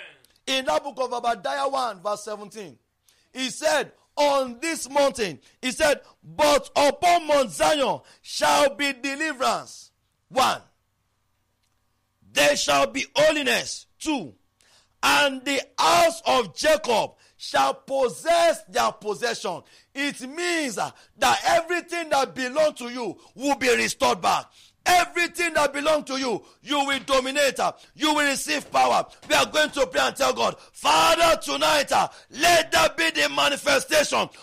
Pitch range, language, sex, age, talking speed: 220-305 Hz, English, male, 50-69, 135 wpm